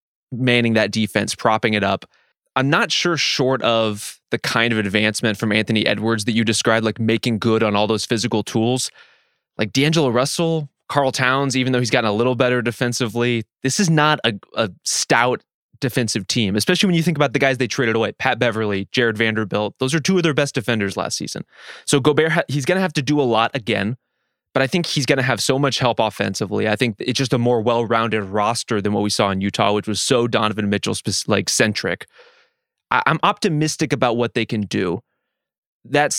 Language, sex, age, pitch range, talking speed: English, male, 20-39, 110-140 Hz, 200 wpm